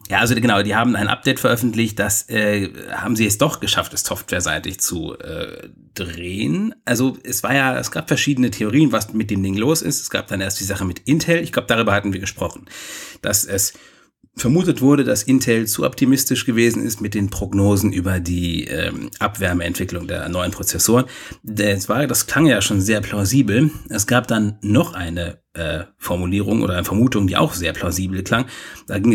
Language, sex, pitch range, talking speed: German, male, 95-120 Hz, 195 wpm